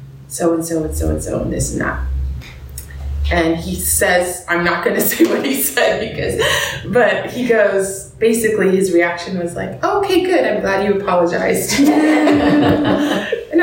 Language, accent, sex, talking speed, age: English, American, female, 150 wpm, 20-39